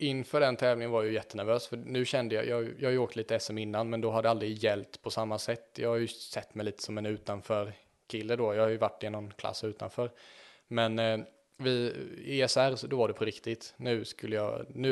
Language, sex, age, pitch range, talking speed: Swedish, male, 20-39, 110-125 Hz, 240 wpm